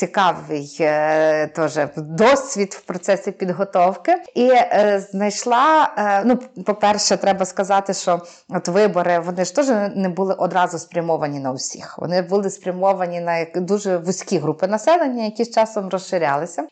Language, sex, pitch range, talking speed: Ukrainian, female, 180-235 Hz, 130 wpm